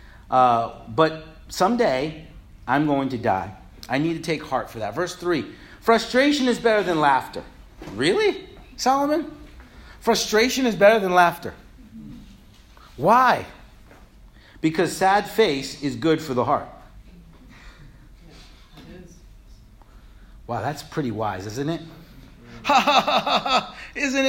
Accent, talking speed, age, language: American, 110 wpm, 40-59, English